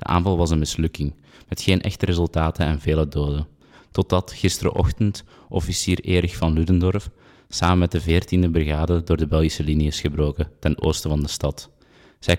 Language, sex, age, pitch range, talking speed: Dutch, male, 20-39, 80-90 Hz, 170 wpm